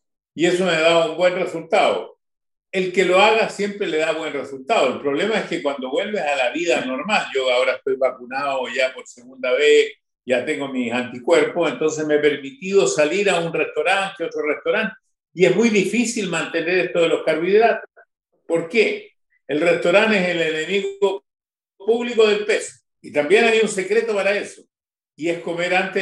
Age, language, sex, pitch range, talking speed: 50-69, Spanish, male, 150-200 Hz, 185 wpm